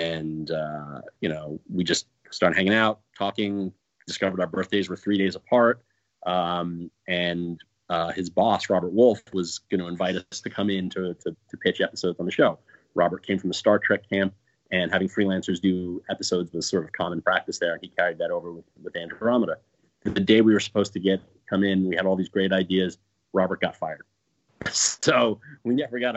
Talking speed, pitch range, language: 200 wpm, 90-105 Hz, English